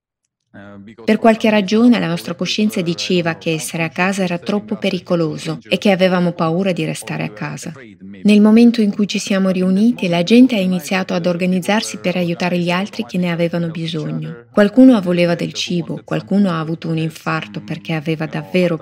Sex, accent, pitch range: female, native, 160-200 Hz